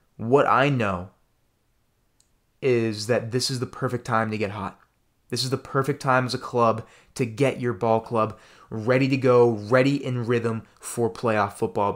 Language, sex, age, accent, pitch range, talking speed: English, male, 20-39, American, 115-150 Hz, 175 wpm